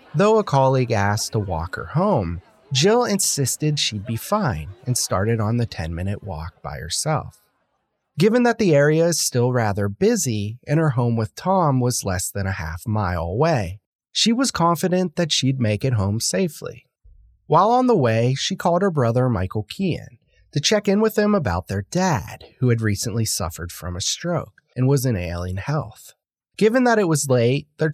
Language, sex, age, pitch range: English, male, 30-49, 105-175 Hz